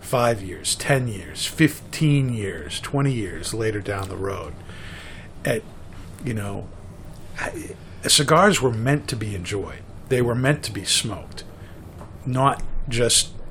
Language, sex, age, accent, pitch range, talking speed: English, male, 50-69, American, 95-130 Hz, 130 wpm